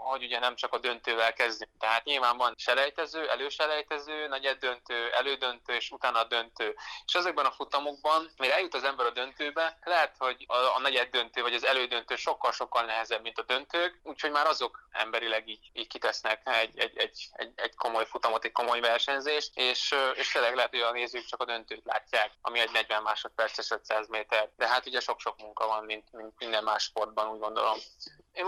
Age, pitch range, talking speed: 20-39, 115-135 Hz, 190 wpm